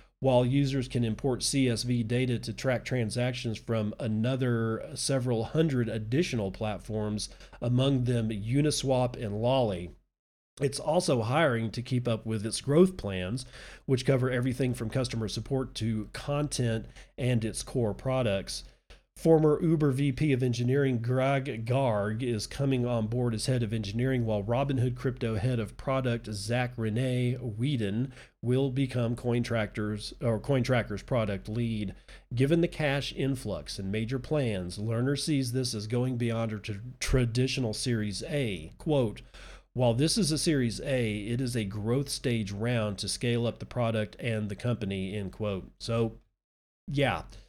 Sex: male